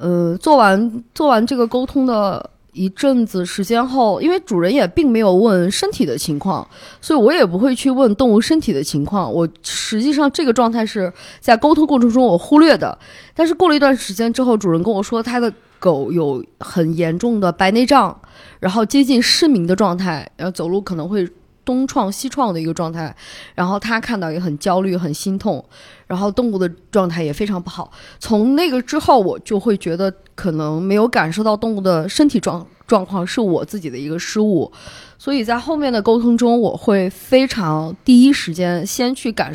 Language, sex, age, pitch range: Chinese, female, 20-39, 175-240 Hz